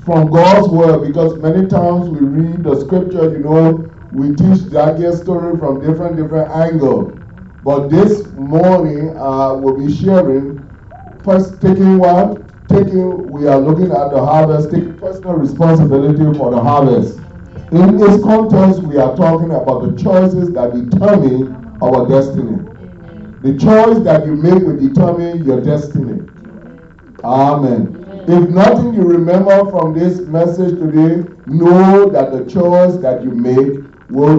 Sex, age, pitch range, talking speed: male, 30-49, 140-180 Hz, 145 wpm